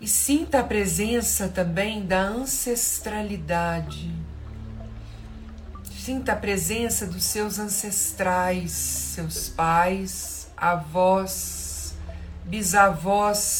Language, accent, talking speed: Portuguese, Brazilian, 75 wpm